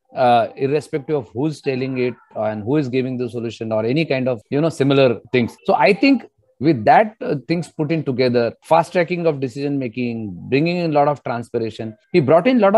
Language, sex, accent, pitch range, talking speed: English, male, Indian, 130-170 Hz, 210 wpm